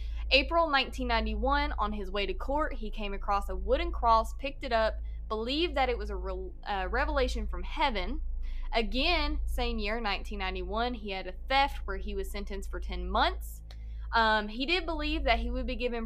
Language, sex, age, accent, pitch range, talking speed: English, female, 20-39, American, 200-255 Hz, 185 wpm